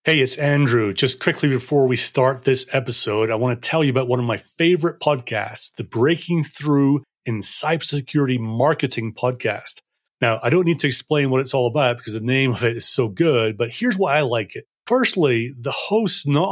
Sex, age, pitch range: male, 30-49, 120-155 Hz